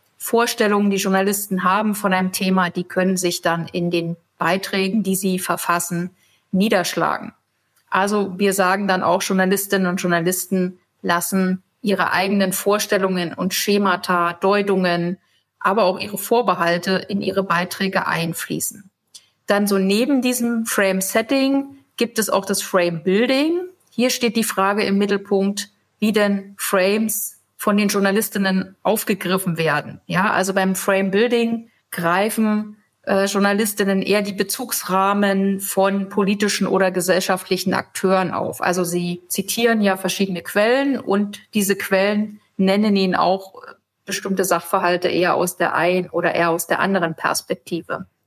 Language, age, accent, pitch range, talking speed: German, 50-69, German, 185-210 Hz, 130 wpm